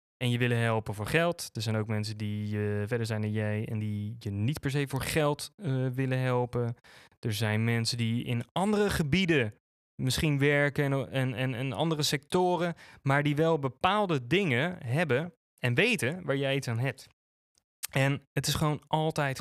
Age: 20-39